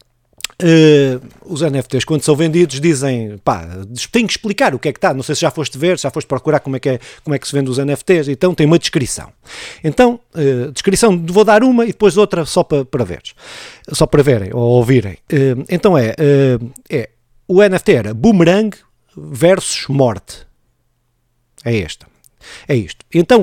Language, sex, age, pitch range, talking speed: Portuguese, male, 50-69, 125-185 Hz, 190 wpm